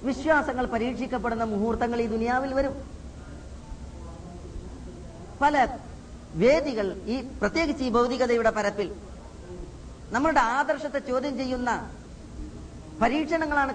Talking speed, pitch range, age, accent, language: 80 wpm, 220-275 Hz, 30-49, native, Malayalam